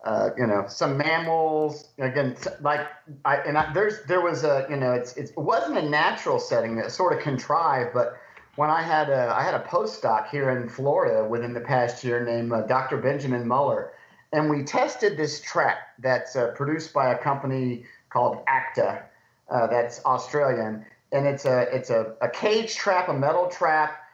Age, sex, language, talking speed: 40-59, male, English, 185 wpm